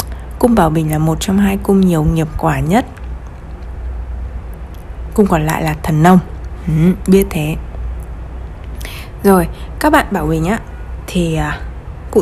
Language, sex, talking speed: Vietnamese, female, 135 wpm